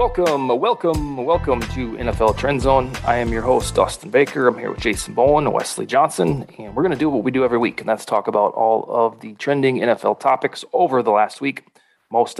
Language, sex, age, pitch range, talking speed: English, male, 30-49, 120-145 Hz, 225 wpm